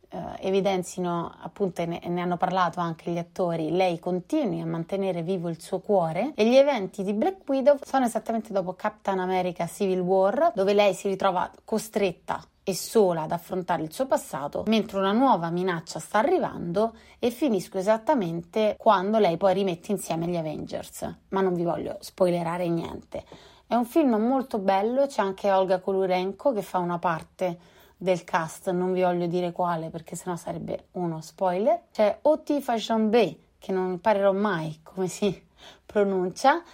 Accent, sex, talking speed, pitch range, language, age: native, female, 165 wpm, 175-215 Hz, Italian, 30-49